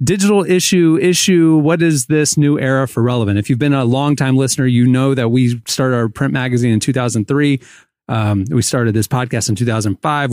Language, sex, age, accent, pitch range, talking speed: English, male, 30-49, American, 115-145 Hz, 190 wpm